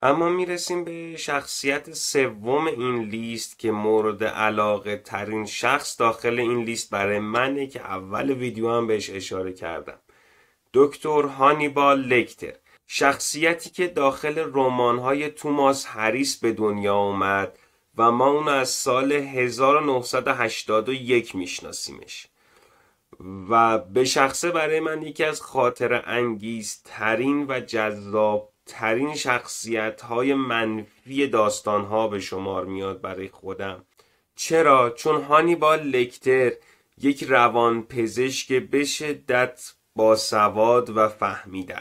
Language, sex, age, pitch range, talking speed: Persian, male, 30-49, 110-140 Hz, 115 wpm